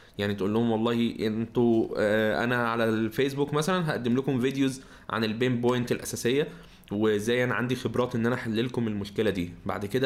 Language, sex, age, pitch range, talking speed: Arabic, male, 20-39, 105-125 Hz, 175 wpm